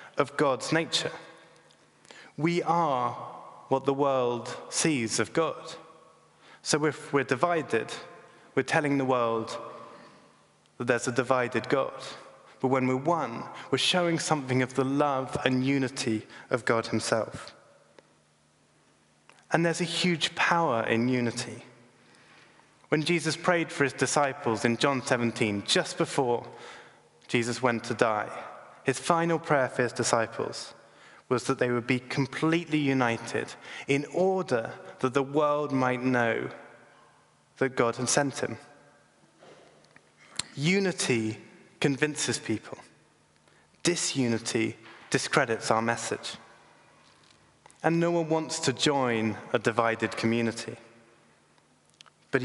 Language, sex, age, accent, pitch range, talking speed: English, male, 20-39, British, 115-155 Hz, 120 wpm